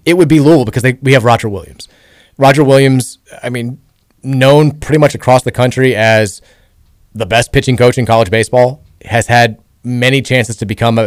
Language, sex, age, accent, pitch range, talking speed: English, male, 30-49, American, 110-140 Hz, 185 wpm